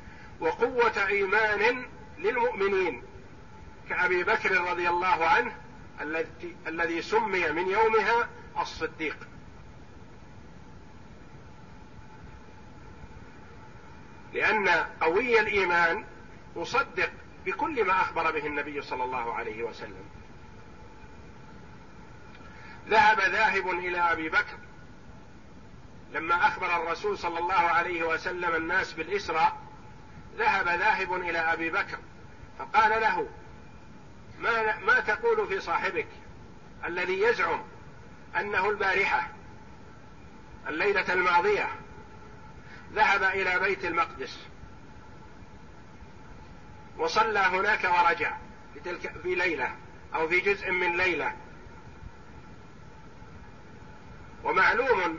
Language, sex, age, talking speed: Arabic, male, 50-69, 80 wpm